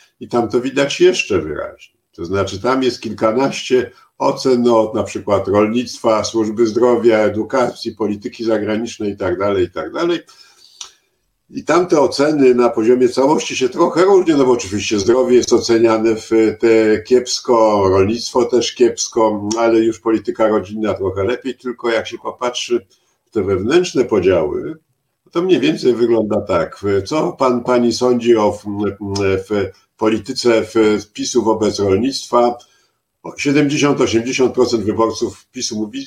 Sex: male